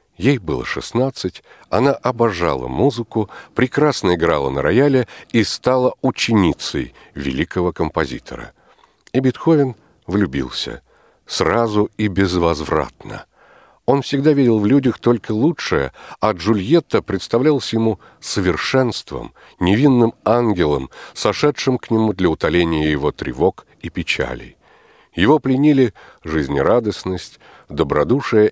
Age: 60-79